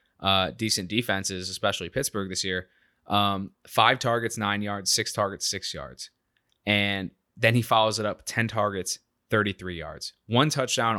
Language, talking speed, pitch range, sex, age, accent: English, 155 wpm, 95-110 Hz, male, 20-39, American